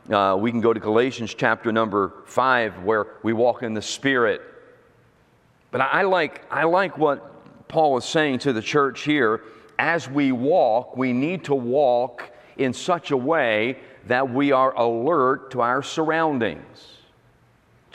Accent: American